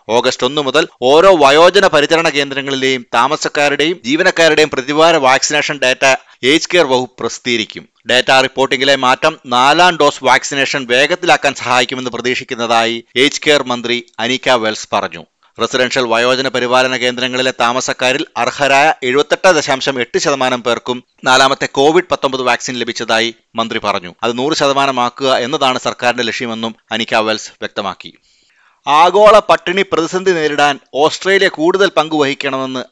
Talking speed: 110 wpm